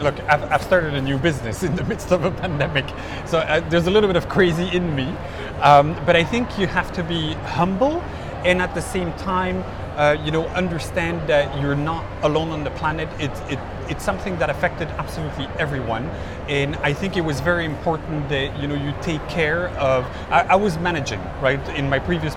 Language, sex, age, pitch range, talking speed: English, male, 30-49, 130-175 Hz, 205 wpm